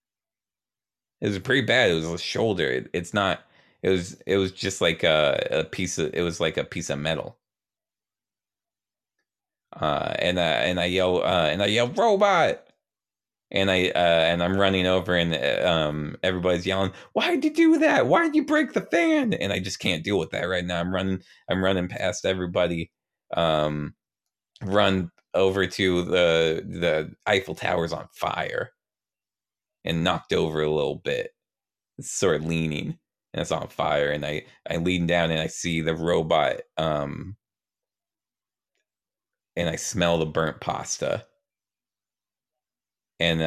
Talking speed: 160 wpm